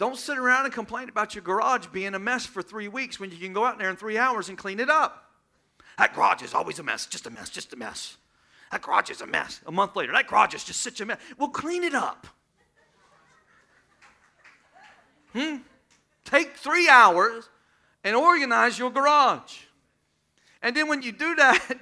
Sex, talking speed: male, 200 wpm